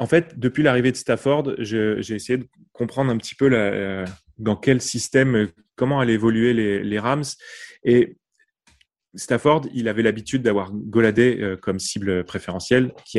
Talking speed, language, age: 160 wpm, French, 20-39